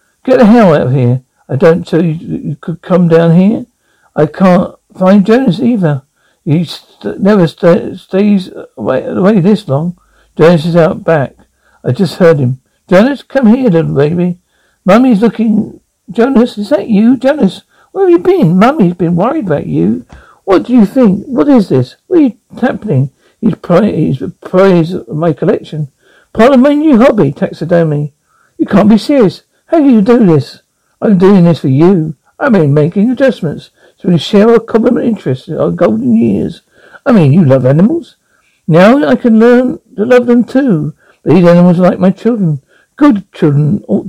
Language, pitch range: English, 165-235 Hz